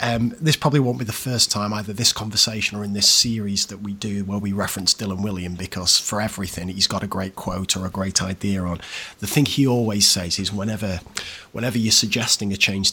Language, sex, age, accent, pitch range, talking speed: English, male, 30-49, British, 100-125 Hz, 225 wpm